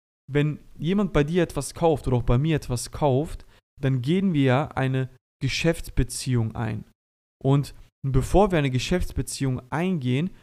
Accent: German